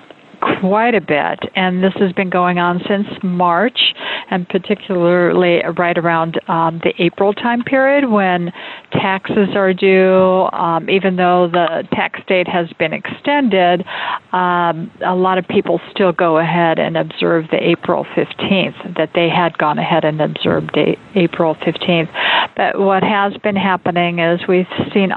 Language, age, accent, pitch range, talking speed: English, 50-69, American, 170-195 Hz, 155 wpm